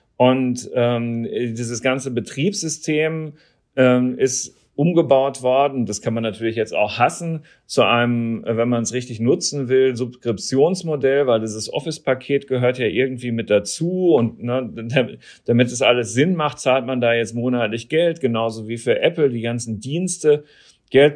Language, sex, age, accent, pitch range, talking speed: German, male, 40-59, German, 115-135 Hz, 150 wpm